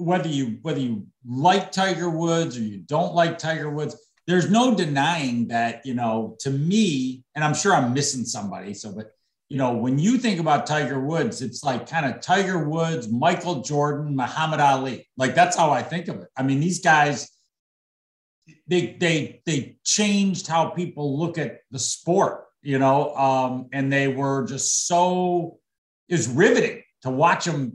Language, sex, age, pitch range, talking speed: English, male, 50-69, 130-175 Hz, 175 wpm